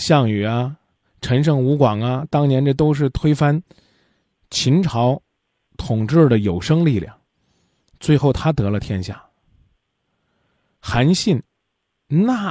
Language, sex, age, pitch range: Chinese, male, 20-39, 100-140 Hz